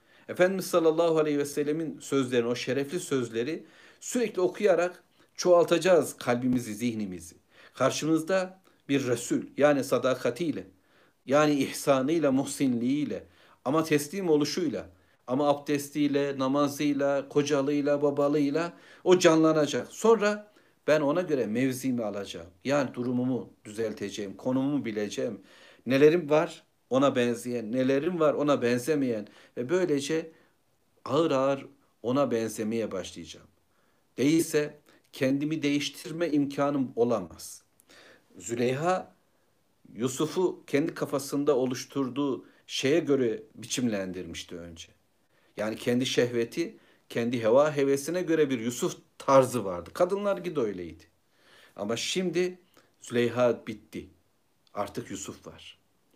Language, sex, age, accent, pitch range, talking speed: Turkish, male, 60-79, native, 120-160 Hz, 100 wpm